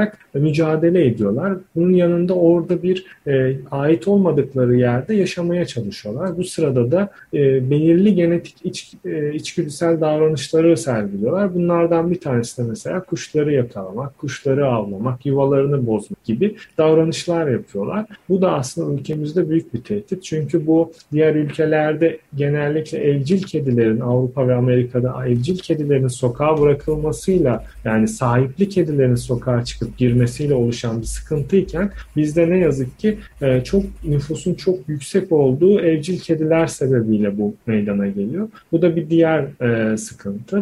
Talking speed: 130 wpm